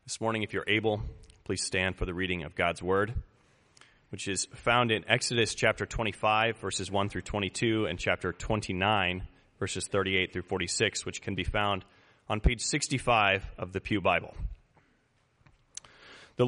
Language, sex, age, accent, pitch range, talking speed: English, male, 30-49, American, 100-120 Hz, 155 wpm